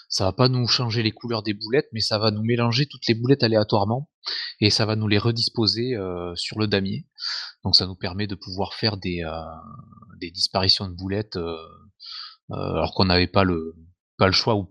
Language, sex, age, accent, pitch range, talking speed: French, male, 30-49, French, 95-130 Hz, 215 wpm